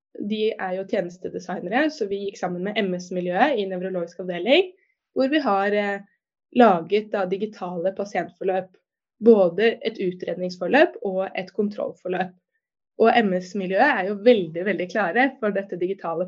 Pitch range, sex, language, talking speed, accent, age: 185-240 Hz, female, English, 145 wpm, Swedish, 20-39